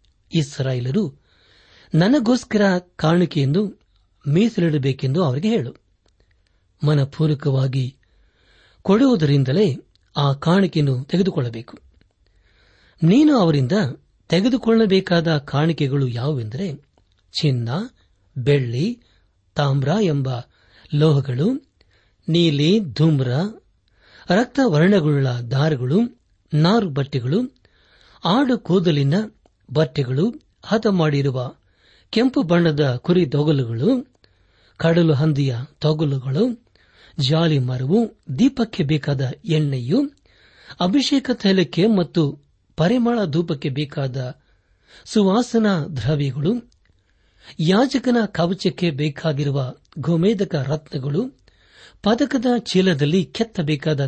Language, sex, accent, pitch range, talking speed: Kannada, male, native, 135-195 Hz, 65 wpm